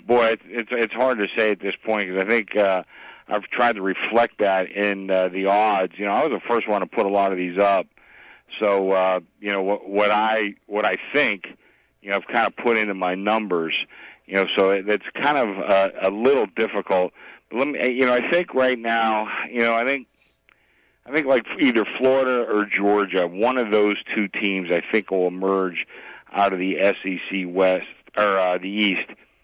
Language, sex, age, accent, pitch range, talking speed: English, male, 50-69, American, 95-110 Hz, 210 wpm